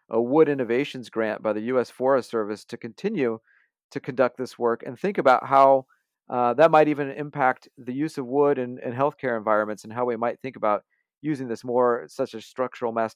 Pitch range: 120-145 Hz